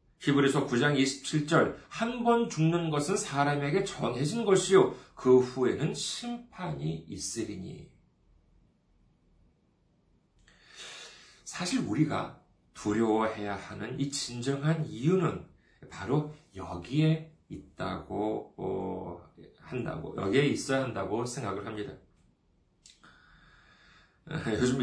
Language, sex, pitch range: Korean, male, 105-160 Hz